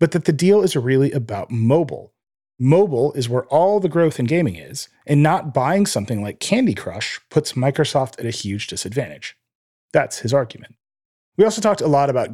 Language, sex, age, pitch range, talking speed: English, male, 30-49, 115-160 Hz, 190 wpm